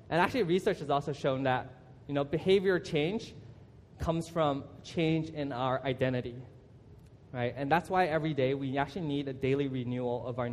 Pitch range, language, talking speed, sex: 125-150 Hz, English, 175 wpm, male